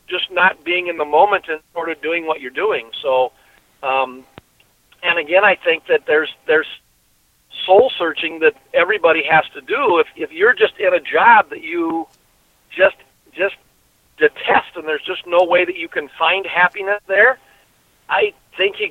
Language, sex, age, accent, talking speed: English, male, 50-69, American, 175 wpm